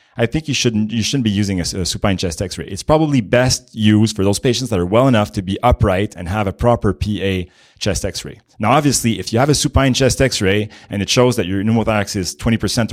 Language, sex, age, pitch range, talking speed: Hebrew, male, 30-49, 95-120 Hz, 245 wpm